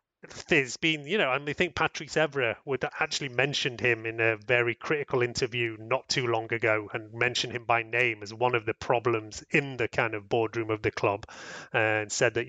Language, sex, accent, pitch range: English, male, British, 115-140 Hz